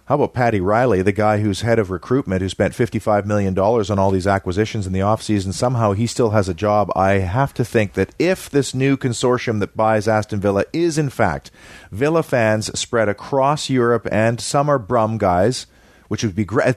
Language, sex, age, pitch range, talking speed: English, male, 40-59, 105-140 Hz, 205 wpm